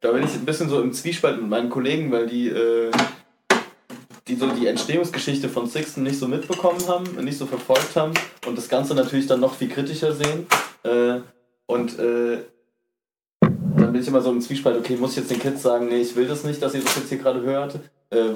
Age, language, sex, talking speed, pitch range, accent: 20-39, German, male, 210 wpm, 115-140 Hz, German